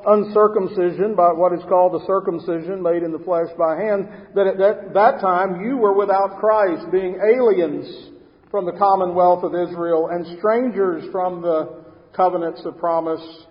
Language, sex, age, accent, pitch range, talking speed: English, male, 50-69, American, 165-200 Hz, 155 wpm